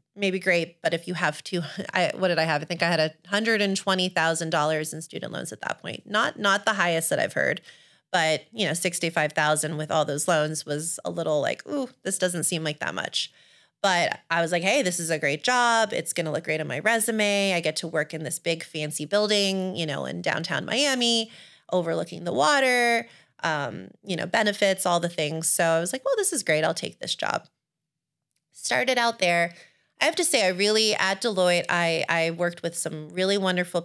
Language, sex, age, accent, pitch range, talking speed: English, female, 30-49, American, 160-195 Hz, 215 wpm